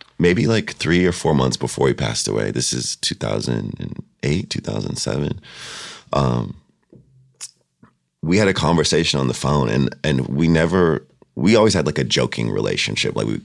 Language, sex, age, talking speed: English, male, 30-49, 160 wpm